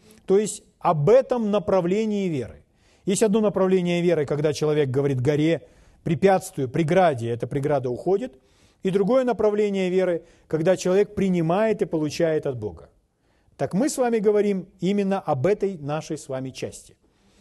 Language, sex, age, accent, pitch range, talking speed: Russian, male, 40-59, native, 145-210 Hz, 145 wpm